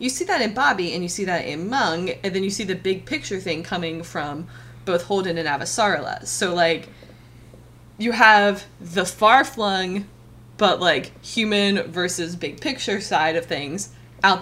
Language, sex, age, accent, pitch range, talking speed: English, female, 20-39, American, 165-195 Hz, 175 wpm